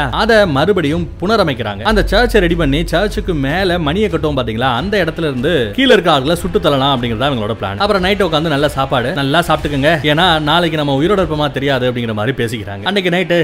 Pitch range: 135-175 Hz